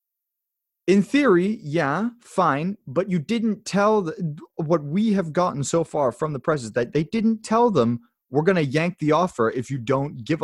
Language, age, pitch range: English, 20-39, 130-205 Hz